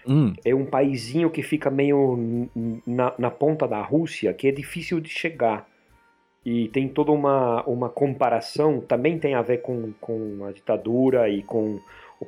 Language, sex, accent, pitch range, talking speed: Portuguese, male, Brazilian, 105-135 Hz, 160 wpm